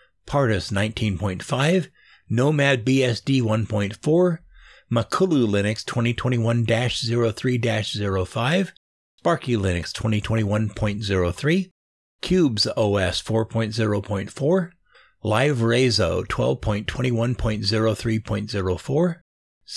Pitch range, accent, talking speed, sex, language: 105-140 Hz, American, 50 wpm, male, English